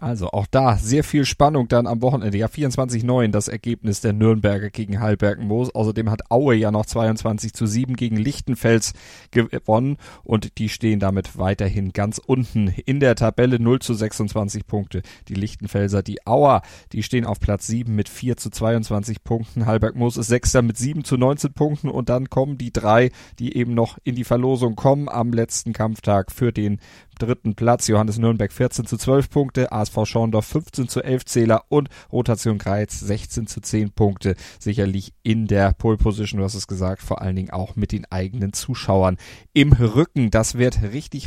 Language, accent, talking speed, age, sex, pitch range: German, German, 180 wpm, 30-49, male, 105-125 Hz